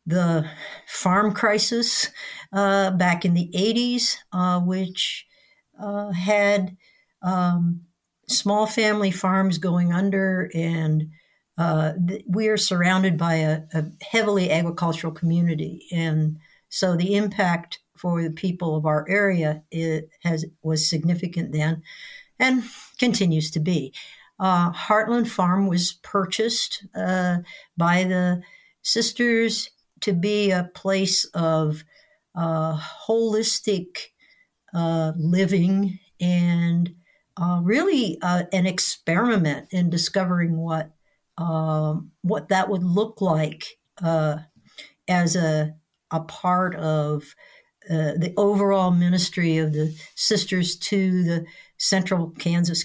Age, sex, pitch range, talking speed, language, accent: 60-79, female, 165-195 Hz, 110 wpm, English, American